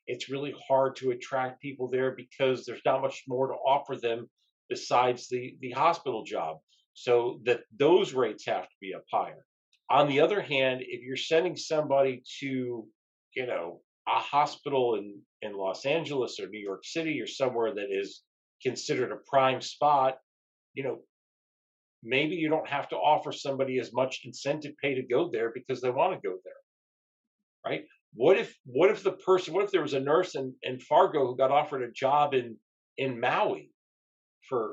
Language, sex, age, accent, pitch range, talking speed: English, male, 50-69, American, 125-160 Hz, 180 wpm